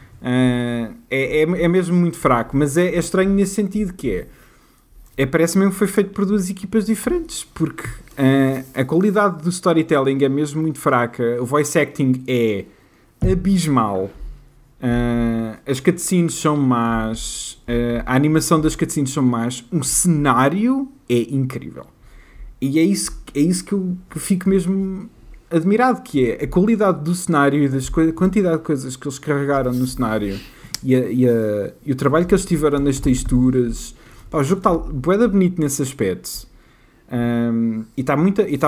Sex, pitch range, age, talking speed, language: male, 125-170 Hz, 20-39, 155 wpm, Portuguese